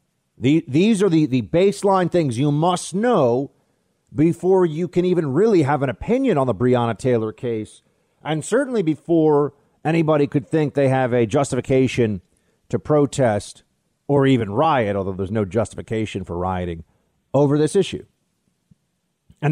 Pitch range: 115-160 Hz